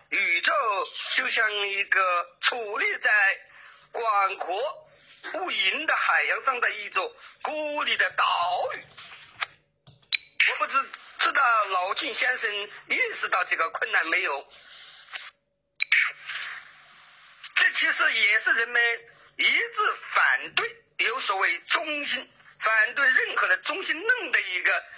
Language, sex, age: Chinese, male, 50-69